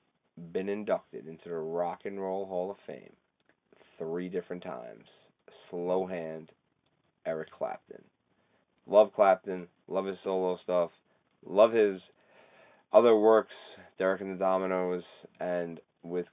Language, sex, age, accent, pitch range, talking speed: English, male, 30-49, American, 85-100 Hz, 120 wpm